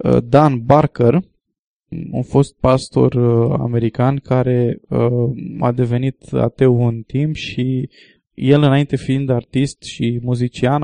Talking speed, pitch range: 115 wpm, 120-150 Hz